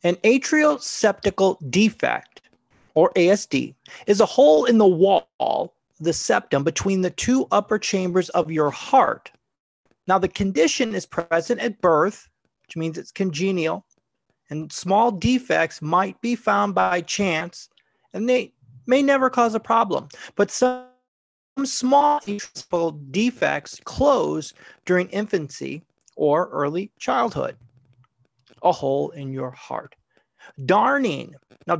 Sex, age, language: male, 30-49, English